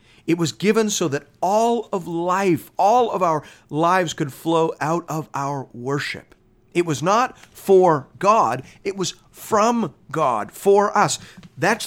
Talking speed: 150 wpm